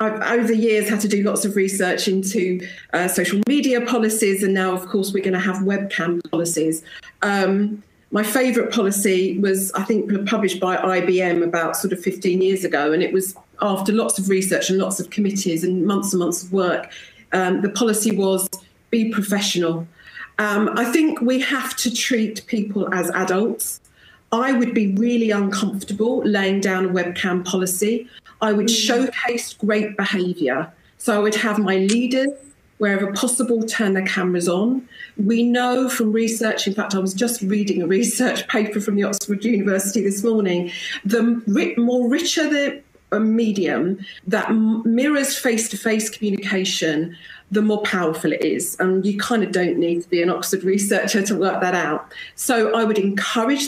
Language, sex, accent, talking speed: English, female, British, 170 wpm